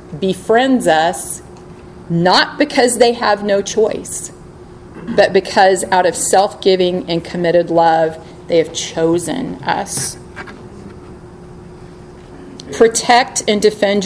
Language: English